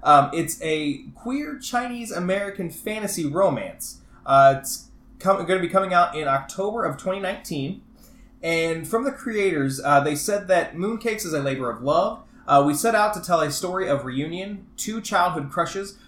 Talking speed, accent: 170 wpm, American